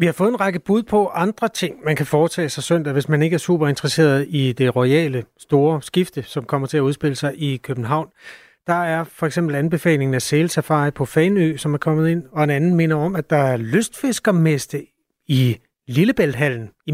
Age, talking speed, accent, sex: 30-49, 210 wpm, native, male